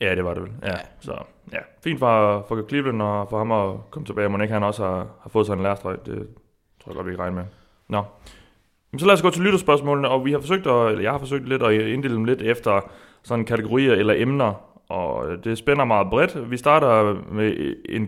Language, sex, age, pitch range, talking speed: Danish, male, 30-49, 105-130 Hz, 235 wpm